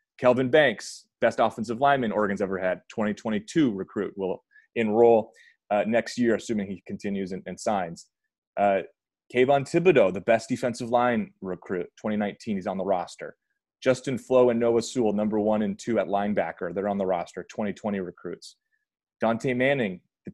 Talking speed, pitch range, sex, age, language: 160 wpm, 105-135 Hz, male, 30-49, English